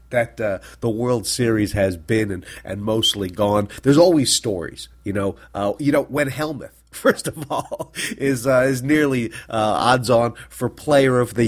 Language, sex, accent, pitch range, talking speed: English, male, American, 105-140 Hz, 180 wpm